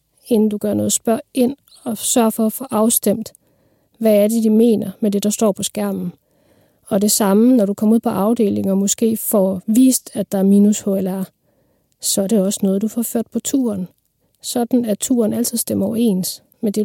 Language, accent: Danish, native